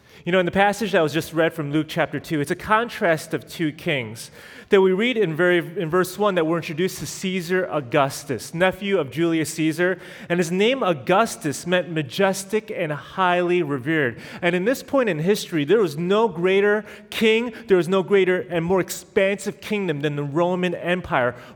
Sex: male